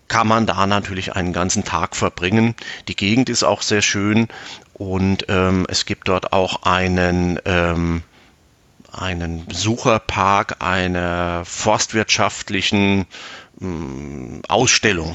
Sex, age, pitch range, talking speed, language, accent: male, 40-59, 90-110 Hz, 105 wpm, German, German